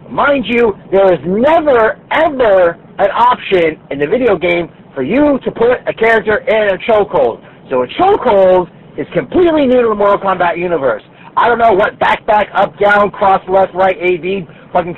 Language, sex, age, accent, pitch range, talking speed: English, male, 40-59, American, 165-220 Hz, 185 wpm